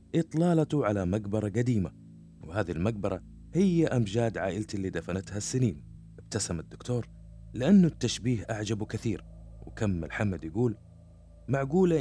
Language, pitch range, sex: Arabic, 95-130 Hz, male